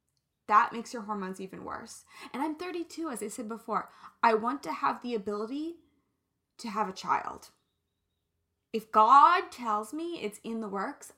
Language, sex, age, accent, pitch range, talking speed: English, female, 20-39, American, 210-275 Hz, 165 wpm